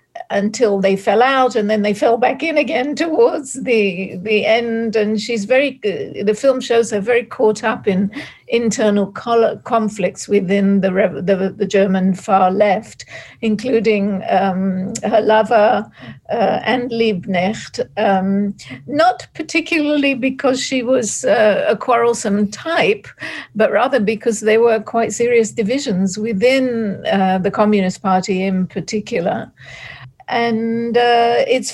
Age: 60-79